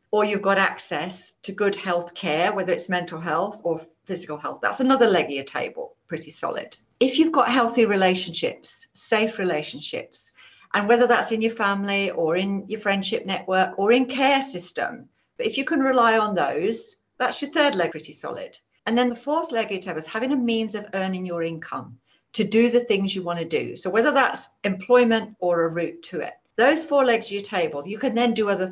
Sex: female